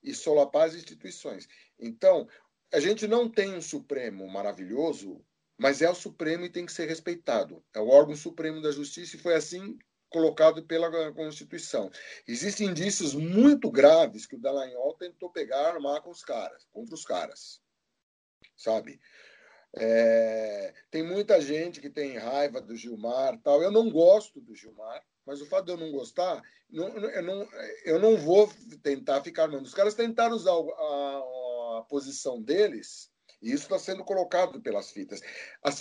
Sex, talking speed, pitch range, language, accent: male, 165 wpm, 145-240 Hz, Portuguese, Brazilian